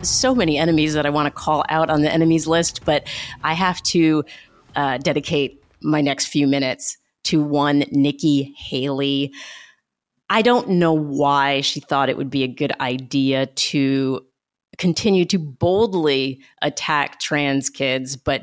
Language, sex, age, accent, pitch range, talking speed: English, female, 30-49, American, 145-170 Hz, 155 wpm